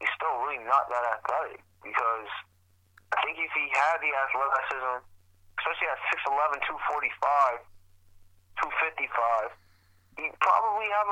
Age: 30-49